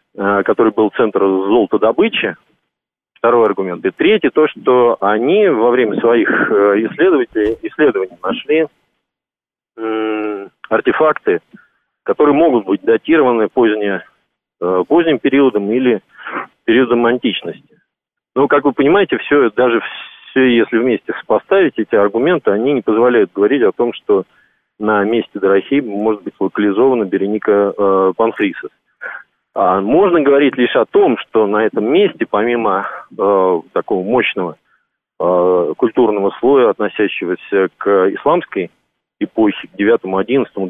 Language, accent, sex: Russian, native, male